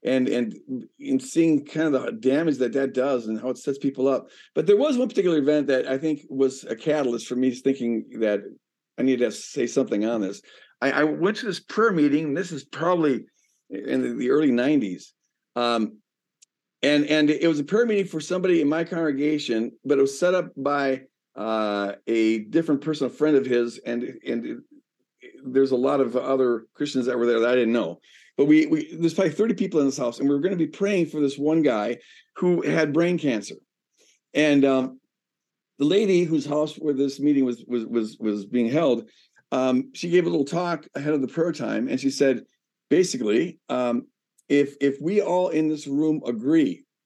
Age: 50-69